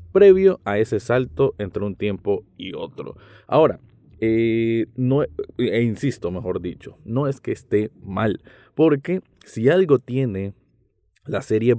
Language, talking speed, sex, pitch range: Spanish, 145 wpm, male, 110-145 Hz